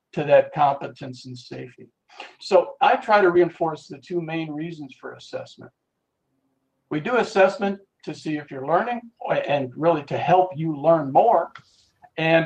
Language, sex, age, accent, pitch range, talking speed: English, male, 60-79, American, 140-180 Hz, 155 wpm